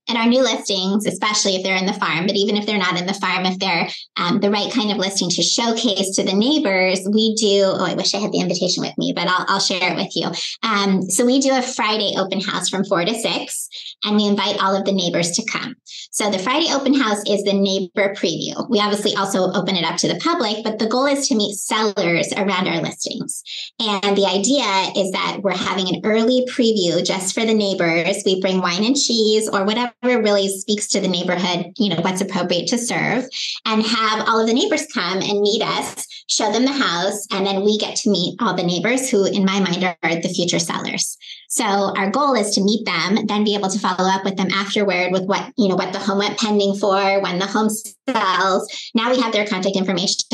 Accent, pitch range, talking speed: American, 190-225 Hz, 235 wpm